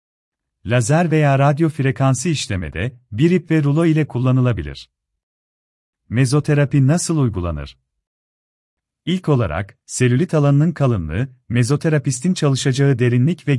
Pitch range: 95-150 Hz